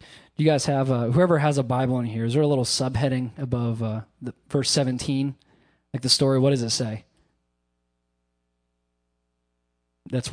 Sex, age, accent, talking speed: male, 20-39, American, 165 wpm